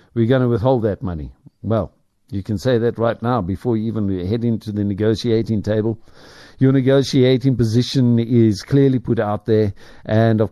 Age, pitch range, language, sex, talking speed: 60-79, 100-120 Hz, English, male, 175 wpm